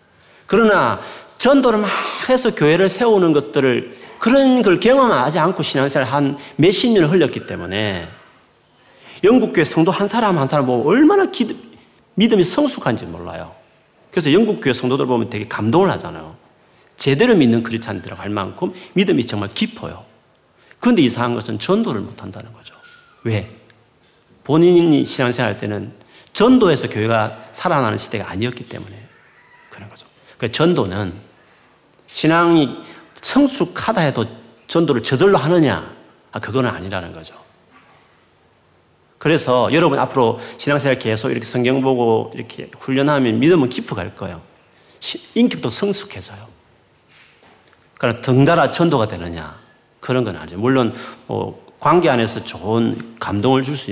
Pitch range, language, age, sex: 110-170 Hz, Korean, 40-59, male